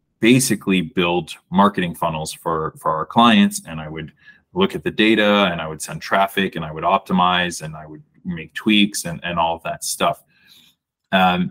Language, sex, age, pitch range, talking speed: English, male, 30-49, 85-135 Hz, 190 wpm